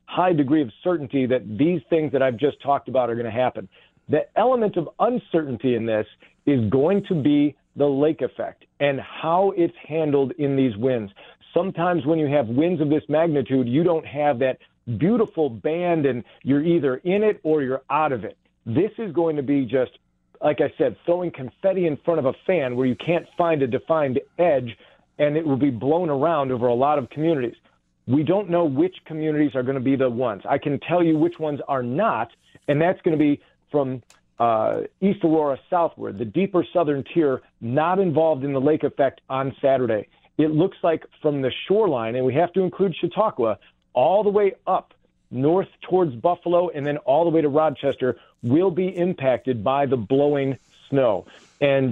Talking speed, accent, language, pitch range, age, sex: 195 wpm, American, English, 130-170 Hz, 40-59, male